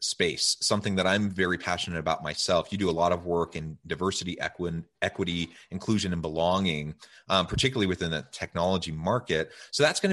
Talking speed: 170 wpm